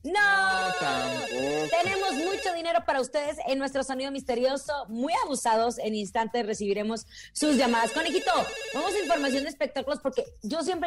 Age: 30-49